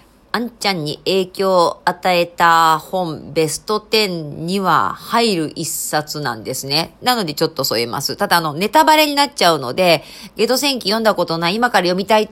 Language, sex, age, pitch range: Japanese, female, 40-59, 155-215 Hz